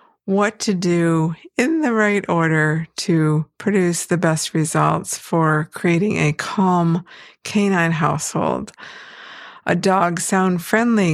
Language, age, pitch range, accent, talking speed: English, 50-69, 160-205 Hz, American, 110 wpm